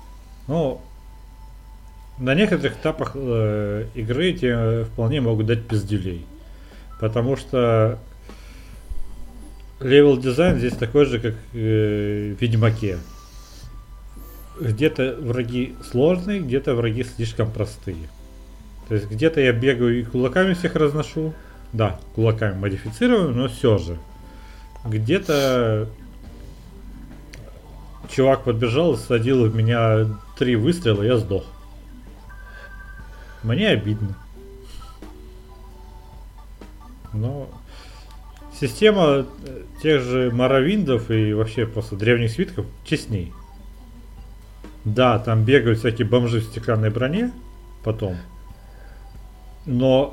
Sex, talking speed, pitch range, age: male, 90 wpm, 100-125 Hz, 40-59